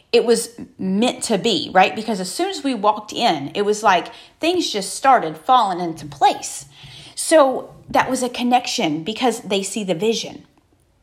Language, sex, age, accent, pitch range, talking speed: English, female, 30-49, American, 190-270 Hz, 175 wpm